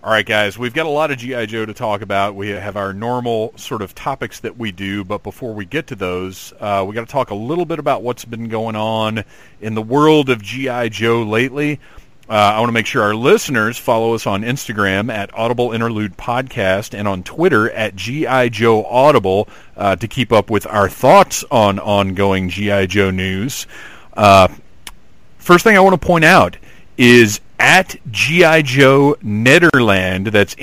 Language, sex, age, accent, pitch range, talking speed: English, male, 40-59, American, 105-135 Hz, 190 wpm